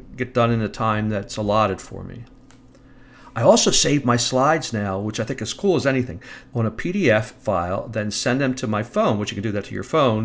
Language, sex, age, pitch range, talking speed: English, male, 50-69, 115-135 Hz, 230 wpm